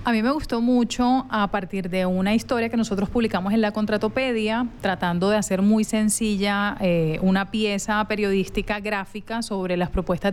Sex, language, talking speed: female, Spanish, 170 wpm